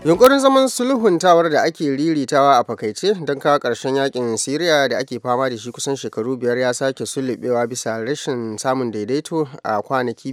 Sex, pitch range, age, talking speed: male, 115-135 Hz, 30-49, 205 wpm